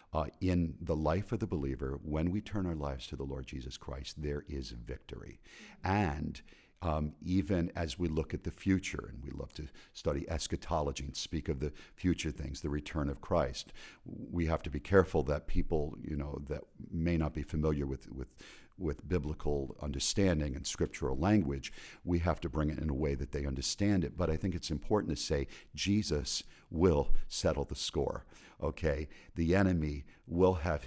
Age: 50-69